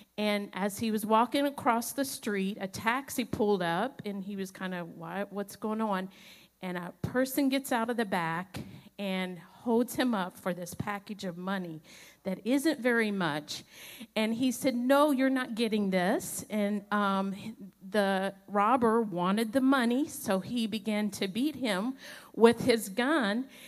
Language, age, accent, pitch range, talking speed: English, 50-69, American, 200-250 Hz, 165 wpm